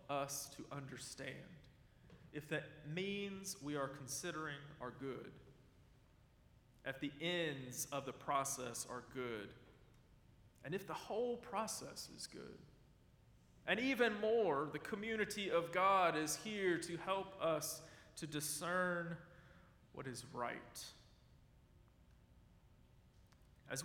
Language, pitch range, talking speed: English, 135-175 Hz, 110 wpm